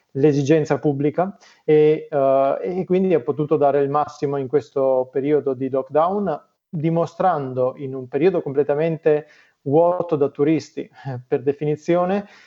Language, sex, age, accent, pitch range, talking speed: Italian, male, 30-49, native, 140-160 Hz, 120 wpm